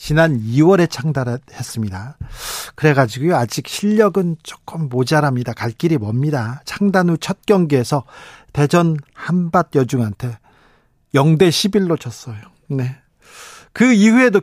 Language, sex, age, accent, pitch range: Korean, male, 40-59, native, 135-180 Hz